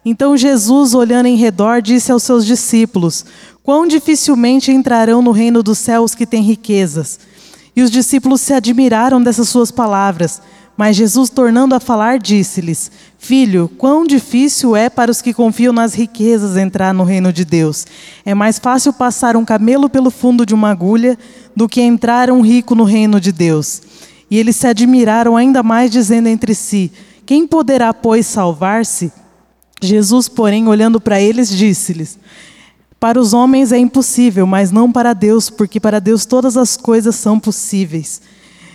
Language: Portuguese